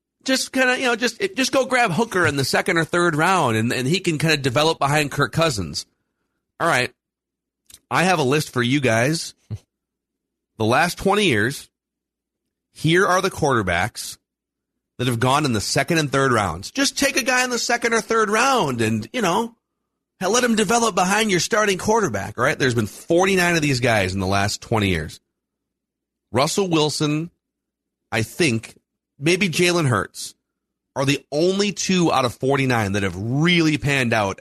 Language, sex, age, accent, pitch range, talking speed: English, male, 40-59, American, 105-170 Hz, 185 wpm